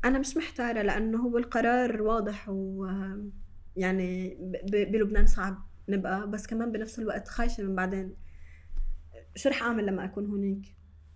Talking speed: 135 wpm